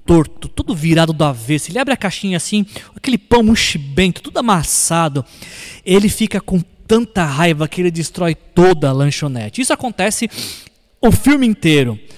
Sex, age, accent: male, 20-39, Brazilian